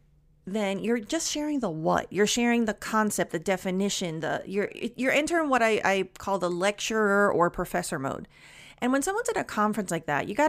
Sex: female